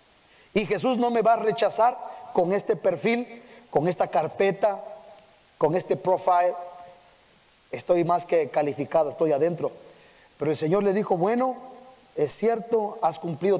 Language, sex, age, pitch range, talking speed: Spanish, male, 30-49, 185-255 Hz, 140 wpm